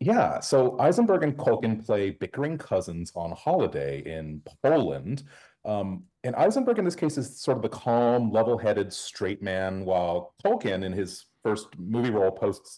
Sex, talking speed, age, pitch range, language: male, 160 wpm, 30-49, 80-125 Hz, English